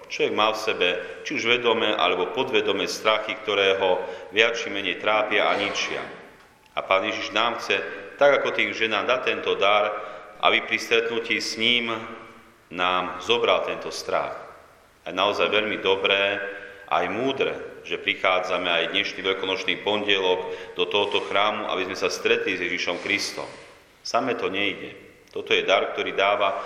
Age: 40-59